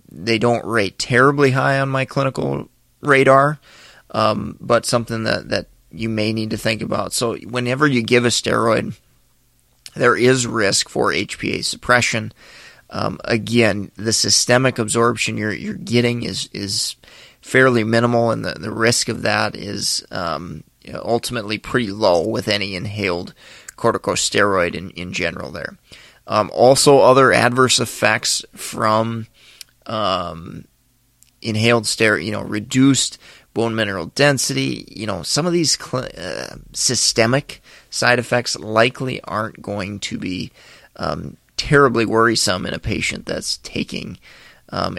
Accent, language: American, English